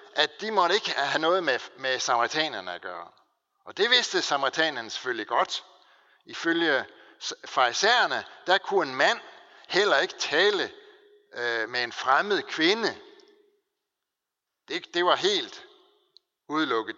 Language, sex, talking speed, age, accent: Danish, male, 125 wpm, 60-79, native